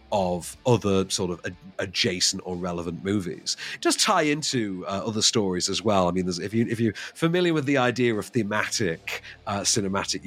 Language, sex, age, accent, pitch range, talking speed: English, male, 40-59, British, 95-130 Hz, 185 wpm